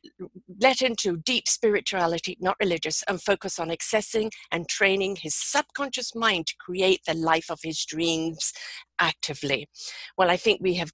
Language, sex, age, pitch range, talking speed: English, female, 50-69, 175-230 Hz, 155 wpm